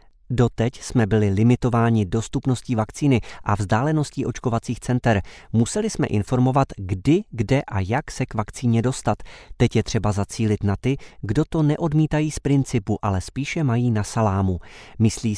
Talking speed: 150 wpm